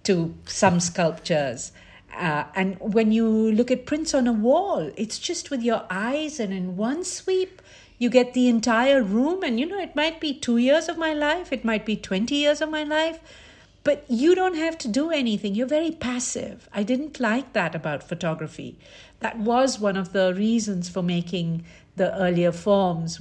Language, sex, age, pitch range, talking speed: English, female, 50-69, 175-235 Hz, 190 wpm